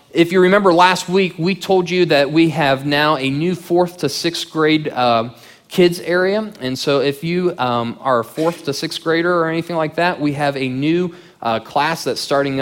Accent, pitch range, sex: American, 125-165 Hz, male